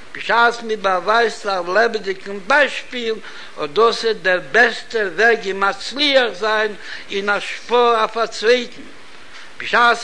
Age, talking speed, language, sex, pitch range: 60-79, 130 wpm, Hebrew, male, 195-235 Hz